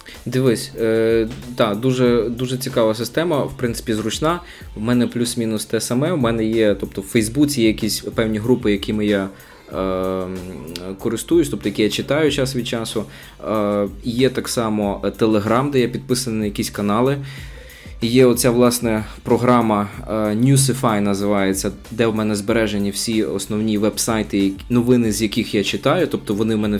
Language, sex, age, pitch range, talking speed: Ukrainian, male, 20-39, 100-120 Hz, 155 wpm